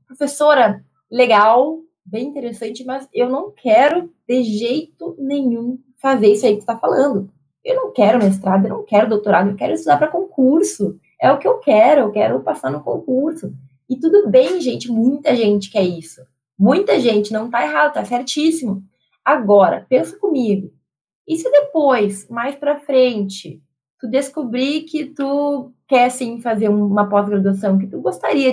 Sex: female